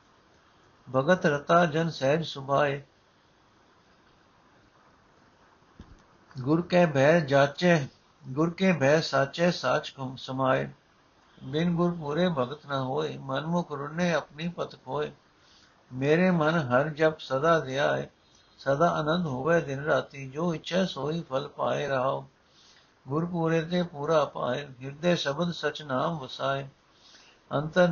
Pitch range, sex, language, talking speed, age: 135-170 Hz, male, Punjabi, 120 wpm, 60-79